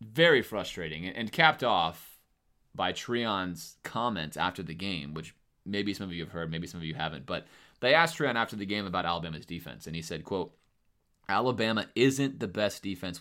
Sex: male